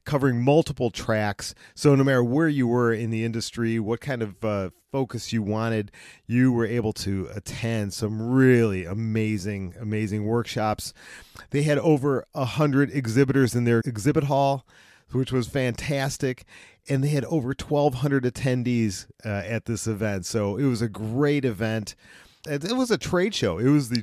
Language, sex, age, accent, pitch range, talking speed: English, male, 40-59, American, 105-130 Hz, 160 wpm